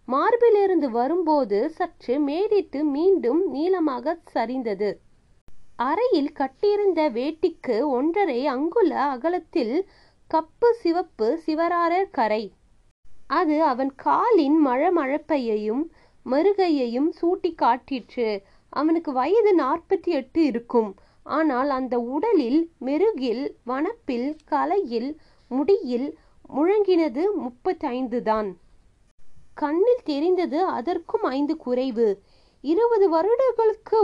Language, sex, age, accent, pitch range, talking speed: Tamil, female, 20-39, native, 265-360 Hz, 75 wpm